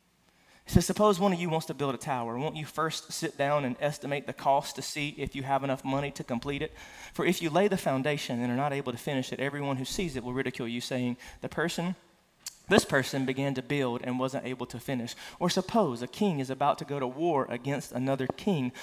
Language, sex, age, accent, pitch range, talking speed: English, male, 30-49, American, 135-195 Hz, 240 wpm